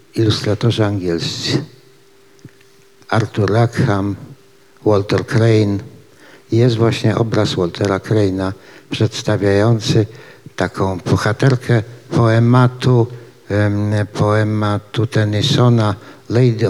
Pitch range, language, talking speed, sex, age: 110-135 Hz, Polish, 65 wpm, male, 60-79